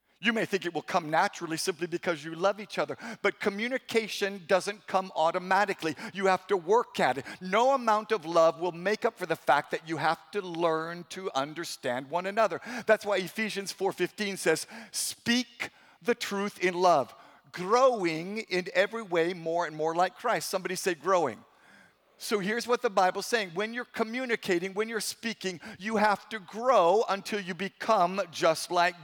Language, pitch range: English, 175-215 Hz